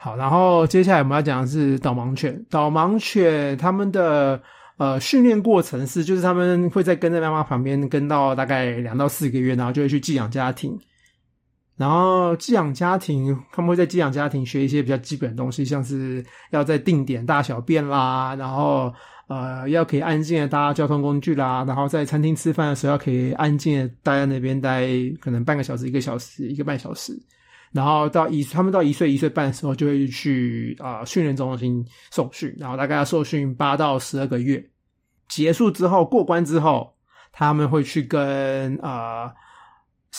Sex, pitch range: male, 130-160 Hz